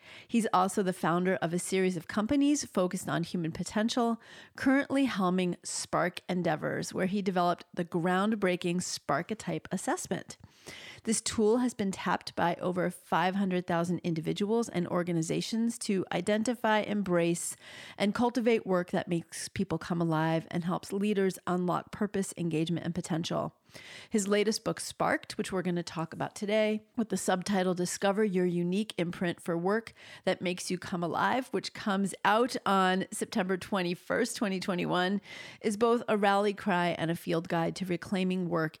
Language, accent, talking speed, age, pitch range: English, American, 150 wpm, 40-59, 175-205 Hz